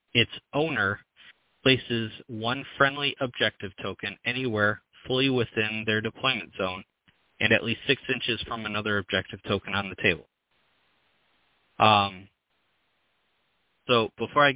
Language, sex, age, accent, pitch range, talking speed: English, male, 30-49, American, 100-120 Hz, 120 wpm